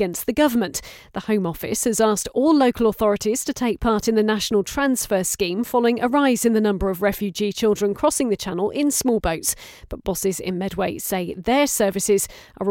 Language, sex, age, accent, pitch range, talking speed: English, female, 40-59, British, 200-255 Hz, 200 wpm